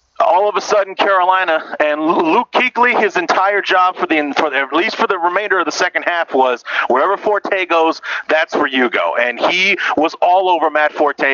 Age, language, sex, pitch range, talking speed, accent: 30-49, English, male, 145-190 Hz, 205 wpm, American